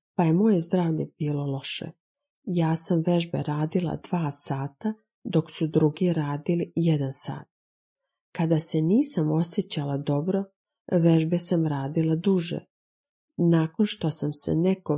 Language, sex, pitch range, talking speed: Croatian, female, 150-185 Hz, 130 wpm